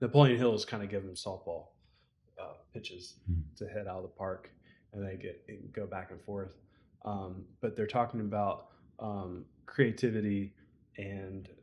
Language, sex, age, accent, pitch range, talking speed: English, male, 20-39, American, 100-120 Hz, 160 wpm